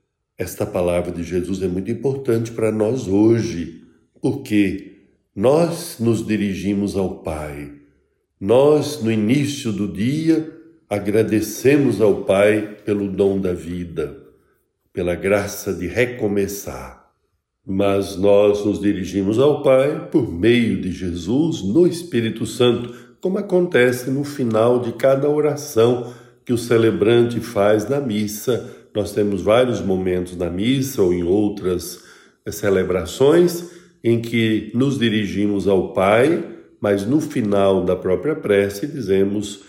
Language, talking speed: Portuguese, 120 wpm